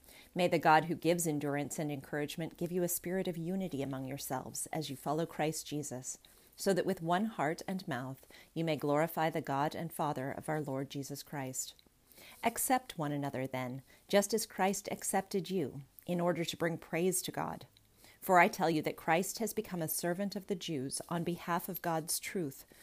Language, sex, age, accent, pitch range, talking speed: English, female, 40-59, American, 145-185 Hz, 195 wpm